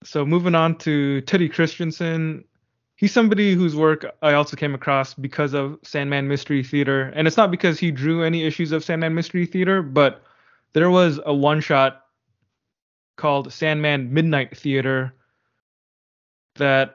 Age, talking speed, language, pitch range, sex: 20-39, 145 wpm, English, 135-155 Hz, male